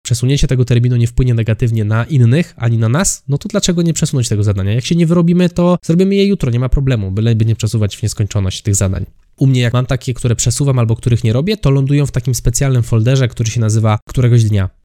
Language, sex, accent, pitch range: Polish, male, native, 110-140 Hz